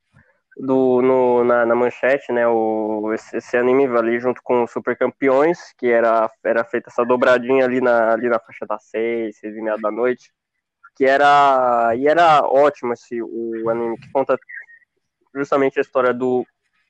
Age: 20-39